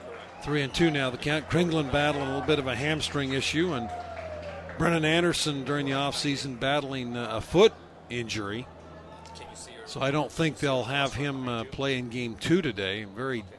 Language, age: English, 50-69